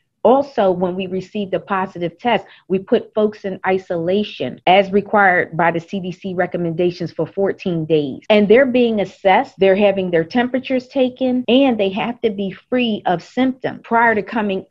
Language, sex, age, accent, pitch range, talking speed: English, female, 40-59, American, 180-220 Hz, 165 wpm